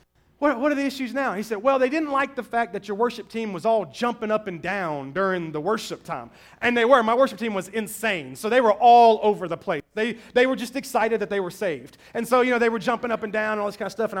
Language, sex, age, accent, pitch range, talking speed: English, male, 30-49, American, 195-255 Hz, 285 wpm